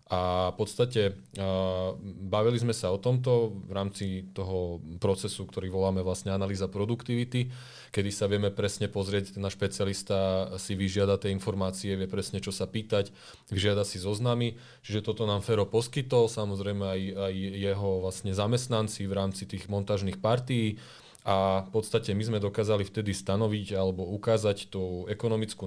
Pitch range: 95-110 Hz